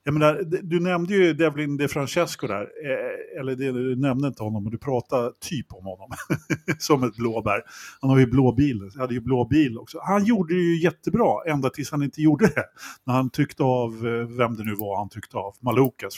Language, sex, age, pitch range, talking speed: Swedish, male, 50-69, 125-175 Hz, 210 wpm